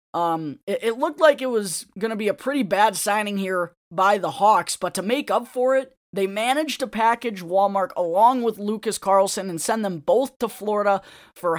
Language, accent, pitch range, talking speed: English, American, 190-235 Hz, 205 wpm